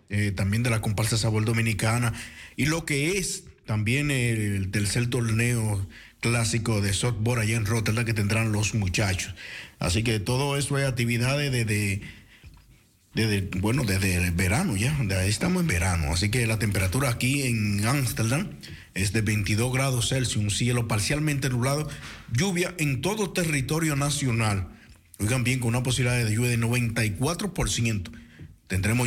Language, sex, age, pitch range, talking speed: Dutch, male, 50-69, 105-140 Hz, 160 wpm